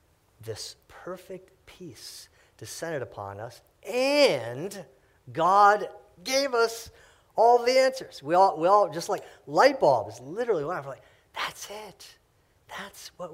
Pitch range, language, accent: 95-145 Hz, English, American